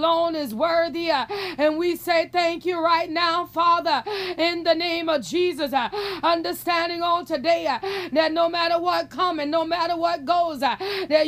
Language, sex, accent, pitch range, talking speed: English, female, American, 325-355 Hz, 180 wpm